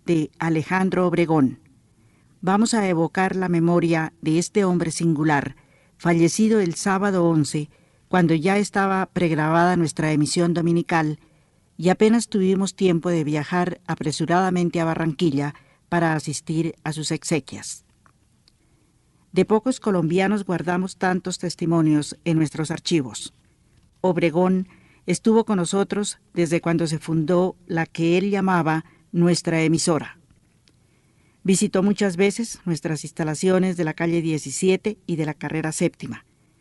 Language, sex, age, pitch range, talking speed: Spanish, female, 50-69, 160-185 Hz, 120 wpm